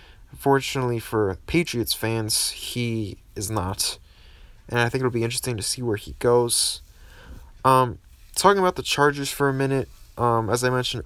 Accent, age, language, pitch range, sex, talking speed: American, 20-39, English, 100-130 Hz, male, 165 wpm